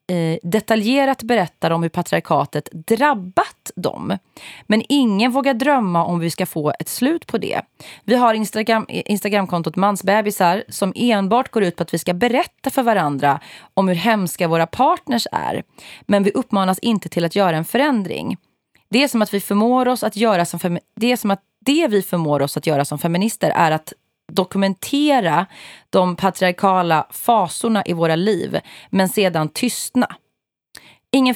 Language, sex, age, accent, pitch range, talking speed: Swedish, female, 30-49, native, 170-220 Hz, 145 wpm